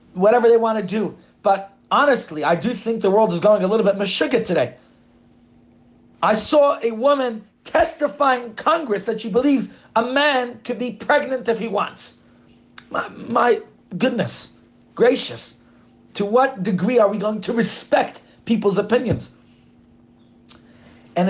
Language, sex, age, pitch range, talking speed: English, male, 40-59, 195-255 Hz, 145 wpm